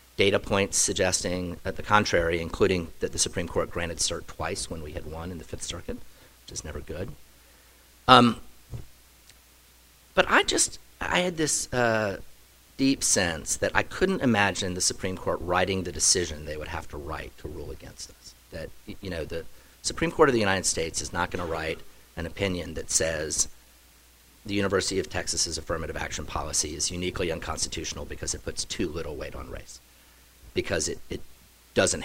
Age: 40-59